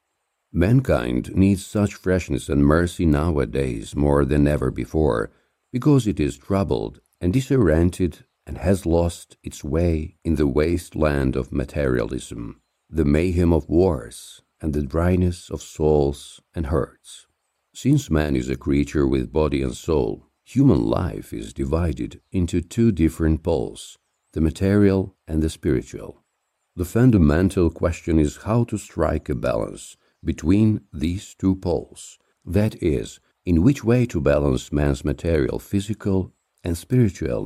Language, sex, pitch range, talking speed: English, male, 75-95 Hz, 135 wpm